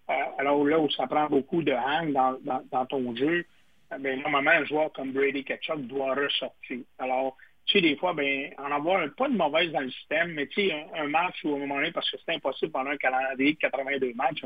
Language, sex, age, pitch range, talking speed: French, male, 60-79, 135-180 Hz, 245 wpm